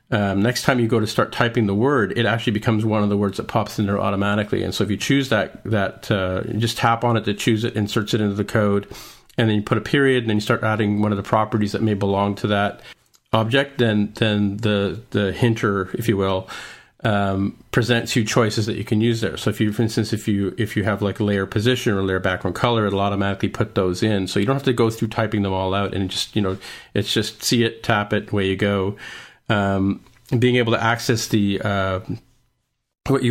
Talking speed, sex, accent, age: 245 wpm, male, American, 40-59